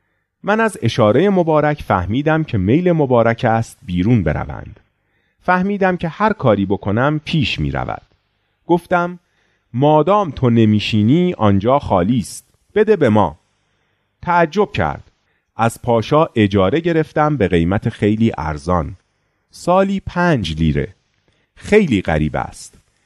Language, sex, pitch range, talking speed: Persian, male, 100-170 Hz, 115 wpm